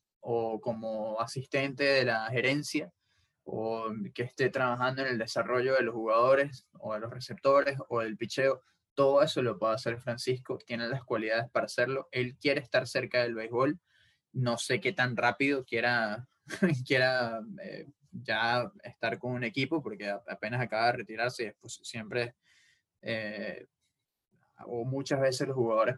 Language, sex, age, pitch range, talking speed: English, male, 20-39, 115-135 Hz, 155 wpm